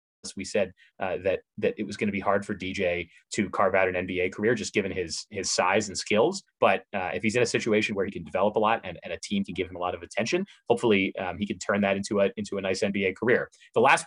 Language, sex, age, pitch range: English, male, 30-49, 95-115 Hz